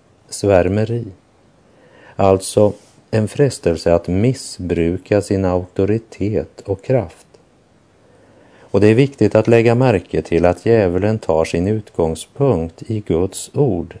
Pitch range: 85-110 Hz